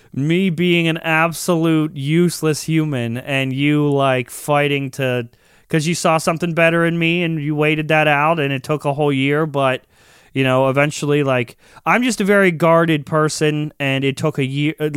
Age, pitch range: 30-49, 130-160 Hz